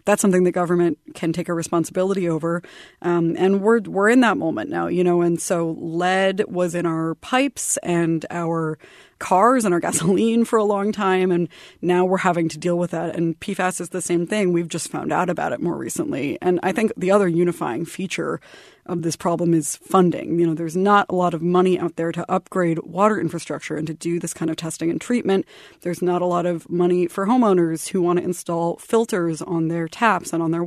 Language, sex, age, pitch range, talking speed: English, female, 20-39, 165-190 Hz, 220 wpm